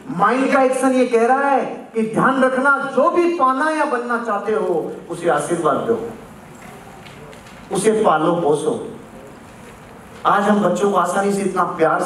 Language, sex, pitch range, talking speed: Hindi, male, 170-240 Hz, 65 wpm